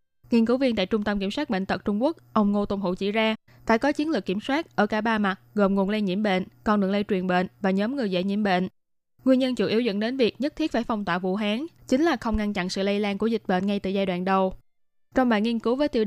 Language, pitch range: Vietnamese, 195-235 Hz